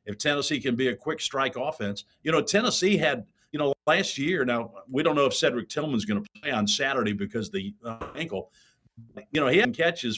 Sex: male